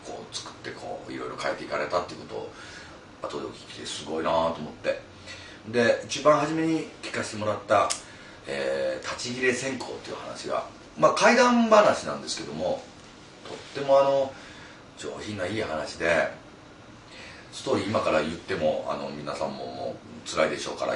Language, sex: Japanese, male